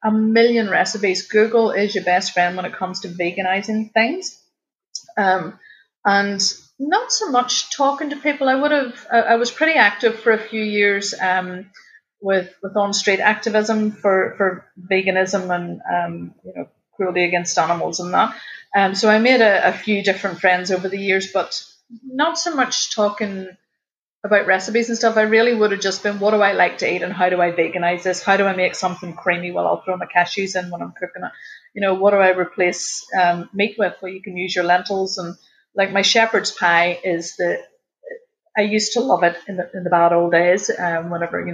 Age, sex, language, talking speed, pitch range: 30-49, female, English, 210 wpm, 180-215 Hz